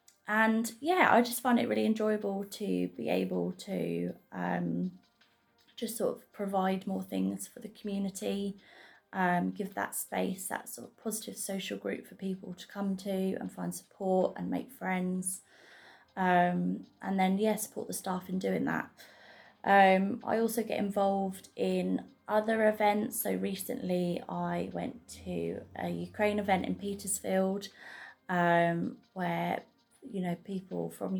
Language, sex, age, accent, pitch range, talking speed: English, female, 20-39, British, 165-200 Hz, 150 wpm